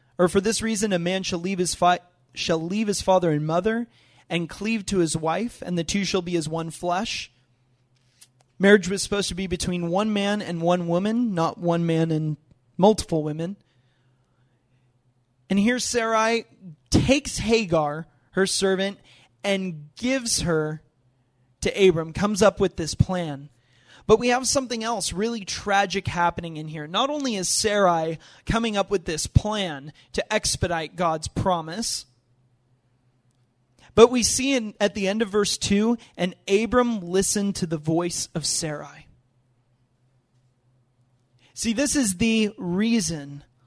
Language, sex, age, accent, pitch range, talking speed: English, male, 30-49, American, 140-215 Hz, 150 wpm